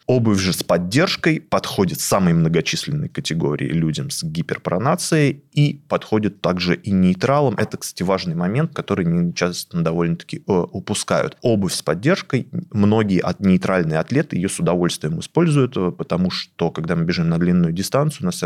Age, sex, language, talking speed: 20-39, male, Russian, 150 wpm